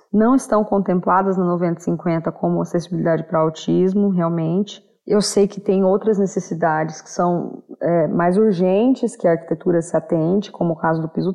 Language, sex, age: Portuguese, female, 20-39